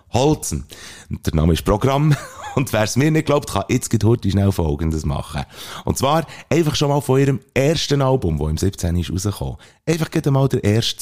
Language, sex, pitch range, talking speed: German, male, 85-120 Hz, 200 wpm